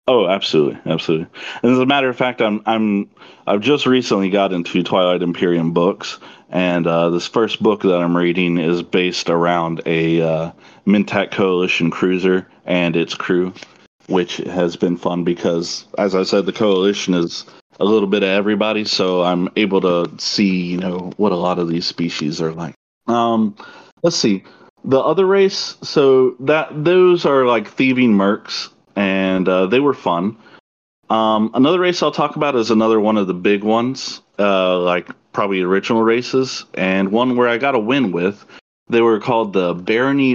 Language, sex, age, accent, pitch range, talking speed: English, male, 30-49, American, 90-115 Hz, 175 wpm